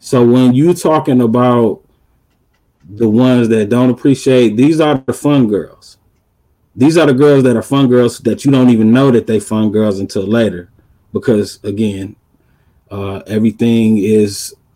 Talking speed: 160 wpm